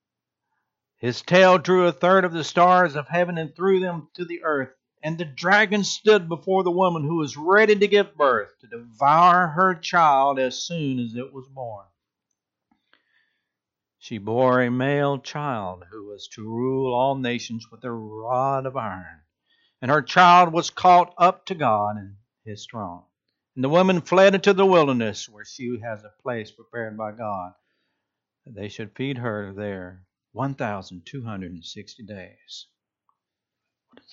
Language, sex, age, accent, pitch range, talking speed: English, male, 60-79, American, 110-175 Hz, 170 wpm